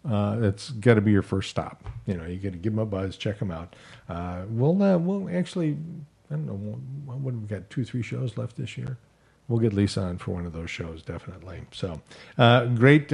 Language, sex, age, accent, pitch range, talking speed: English, male, 50-69, American, 105-130 Hz, 240 wpm